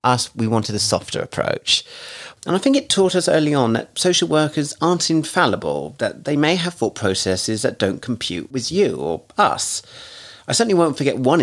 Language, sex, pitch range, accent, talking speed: English, male, 105-130 Hz, British, 195 wpm